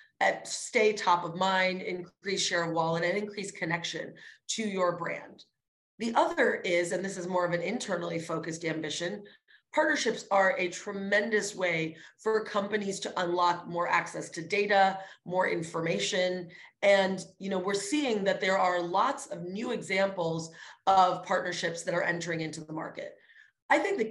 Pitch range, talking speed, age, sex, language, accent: 175-220 Hz, 160 wpm, 30-49, female, English, American